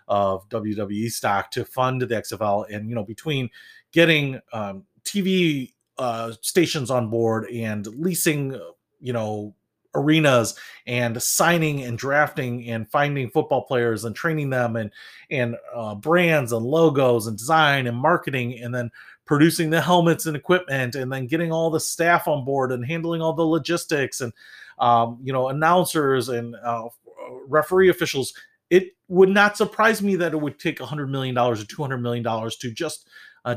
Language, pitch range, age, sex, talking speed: English, 120-170 Hz, 30-49, male, 160 wpm